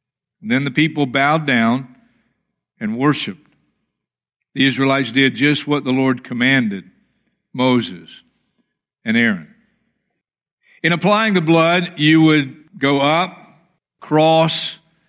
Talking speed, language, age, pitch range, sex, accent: 110 wpm, English, 50-69, 150-200 Hz, male, American